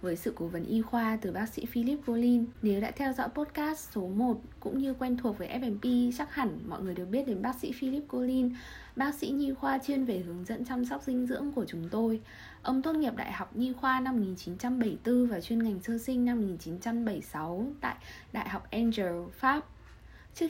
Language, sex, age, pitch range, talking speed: Vietnamese, female, 20-39, 195-250 Hz, 210 wpm